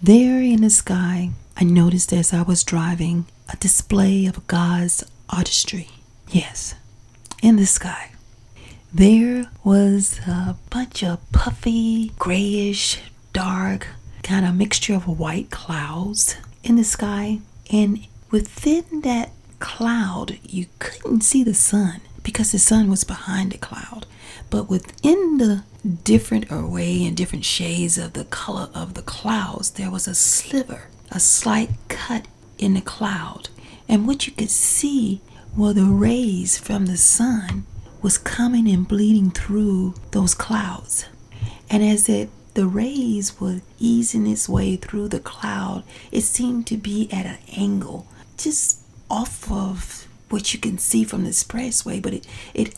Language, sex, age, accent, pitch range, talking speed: English, female, 40-59, American, 175-220 Hz, 145 wpm